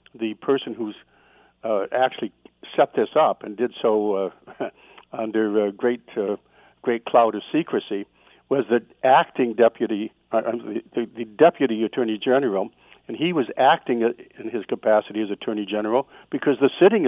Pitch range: 105-125 Hz